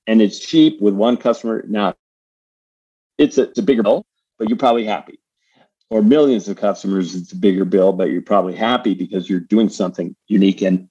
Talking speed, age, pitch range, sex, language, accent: 185 wpm, 50-69, 95-110 Hz, male, English, American